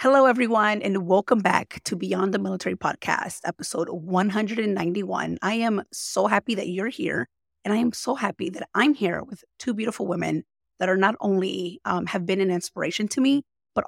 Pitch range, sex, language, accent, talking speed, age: 185-230 Hz, female, English, American, 185 wpm, 30-49